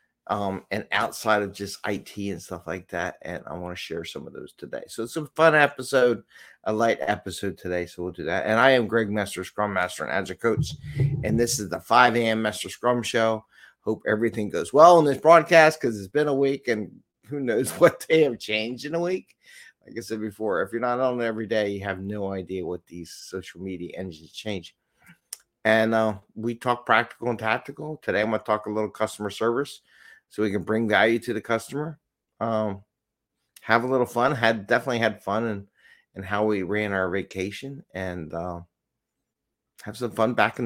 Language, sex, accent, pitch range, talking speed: English, male, American, 100-125 Hz, 205 wpm